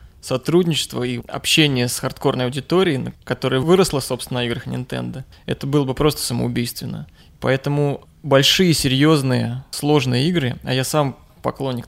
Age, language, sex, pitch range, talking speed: 20-39, Russian, male, 125-140 Hz, 130 wpm